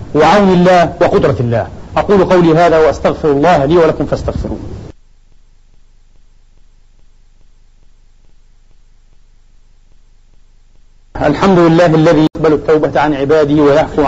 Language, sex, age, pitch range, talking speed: Arabic, male, 40-59, 105-170 Hz, 85 wpm